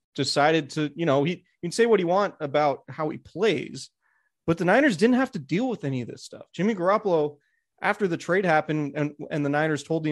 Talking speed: 225 wpm